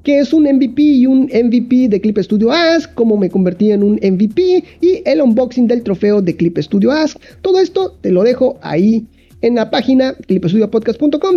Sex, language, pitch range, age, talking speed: male, Spanish, 225-325 Hz, 40-59, 190 wpm